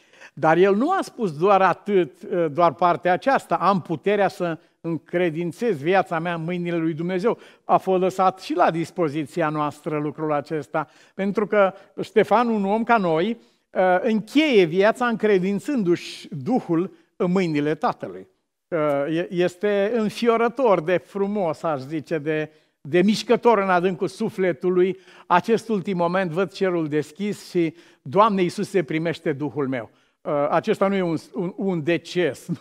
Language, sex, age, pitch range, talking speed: Romanian, male, 50-69, 165-205 Hz, 140 wpm